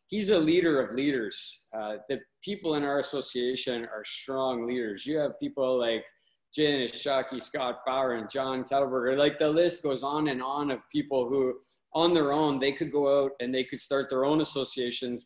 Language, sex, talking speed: English, male, 195 wpm